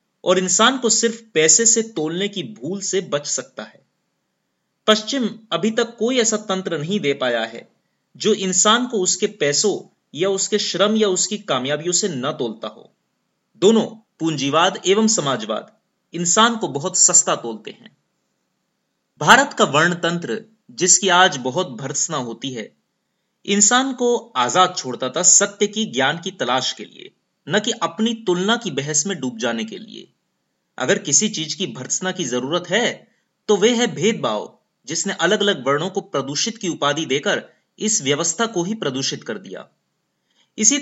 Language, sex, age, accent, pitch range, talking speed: Hindi, male, 30-49, native, 165-220 Hz, 160 wpm